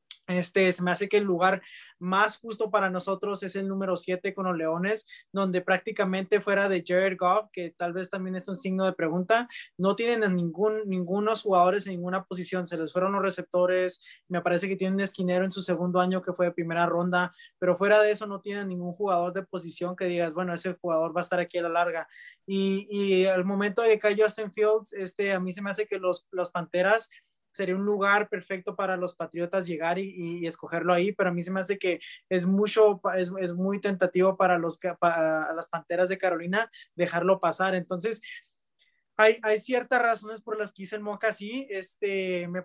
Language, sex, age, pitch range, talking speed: English, male, 20-39, 180-200 Hz, 210 wpm